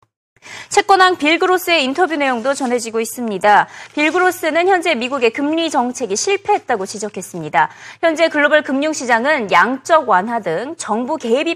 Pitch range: 215-330 Hz